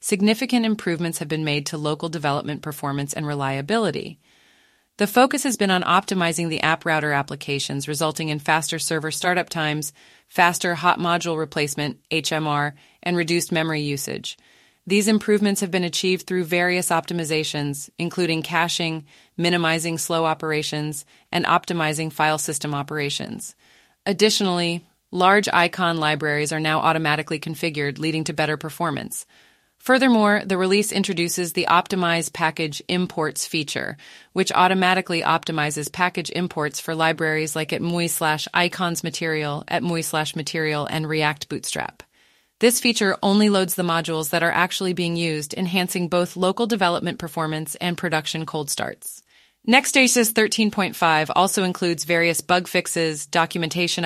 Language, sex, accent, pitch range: English, female, American, 155-180 Hz